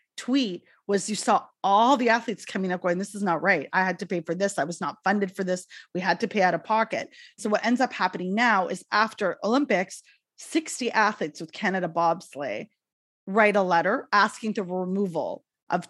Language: English